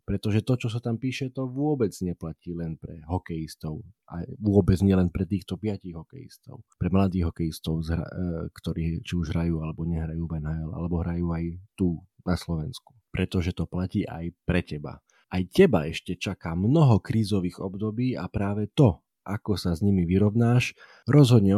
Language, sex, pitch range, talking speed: Slovak, male, 85-105 Hz, 160 wpm